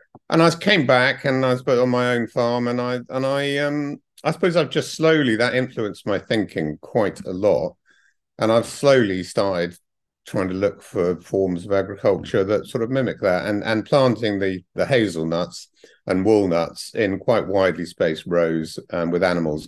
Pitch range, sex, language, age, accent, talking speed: 85-125 Hz, male, English, 50-69, British, 185 wpm